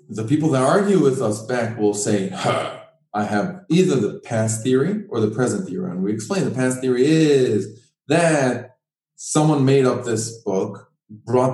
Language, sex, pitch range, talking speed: English, male, 130-180 Hz, 175 wpm